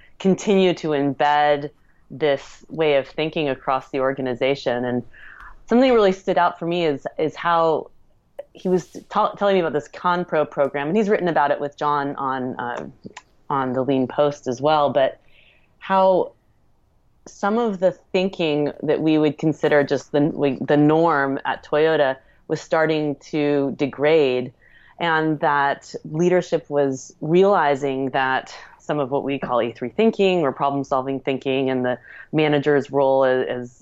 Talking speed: 155 wpm